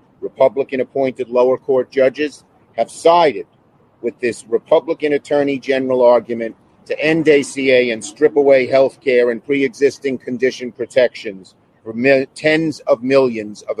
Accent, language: American, English